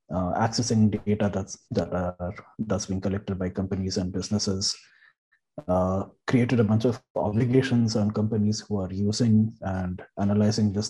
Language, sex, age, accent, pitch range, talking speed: English, male, 30-49, Indian, 100-115 Hz, 140 wpm